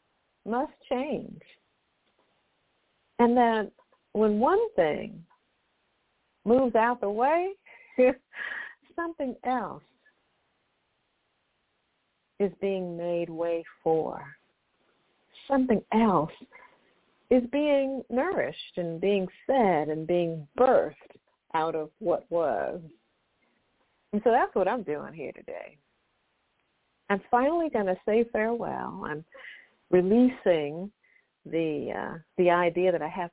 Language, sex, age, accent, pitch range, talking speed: English, female, 50-69, American, 175-275 Hz, 100 wpm